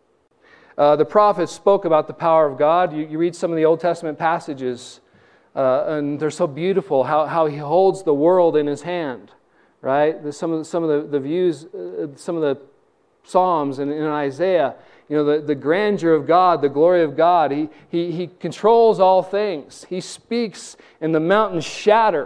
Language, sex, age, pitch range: English, male, 40-59, 145-185 Hz